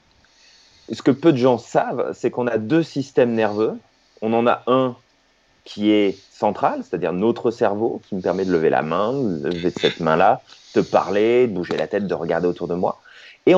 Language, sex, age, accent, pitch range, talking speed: French, male, 30-49, French, 110-150 Hz, 200 wpm